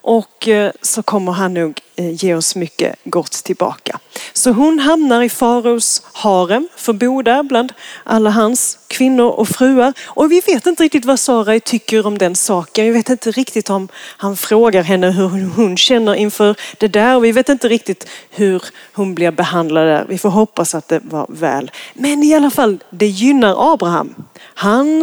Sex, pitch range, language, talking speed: female, 195-260 Hz, Swedish, 175 wpm